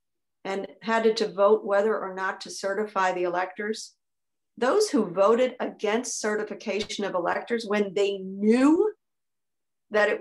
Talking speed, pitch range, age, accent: 135 wpm, 195-230 Hz, 50-69, American